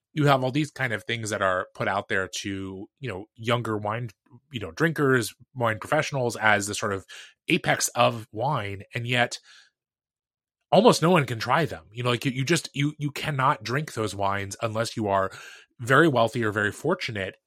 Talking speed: 195 wpm